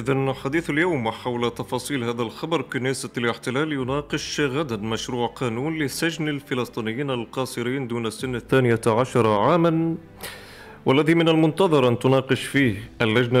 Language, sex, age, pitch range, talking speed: Arabic, male, 30-49, 115-145 Hz, 125 wpm